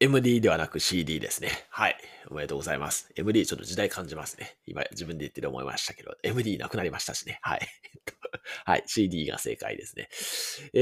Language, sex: Japanese, male